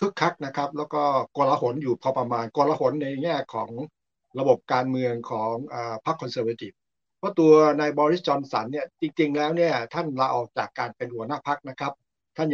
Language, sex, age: Thai, male, 60-79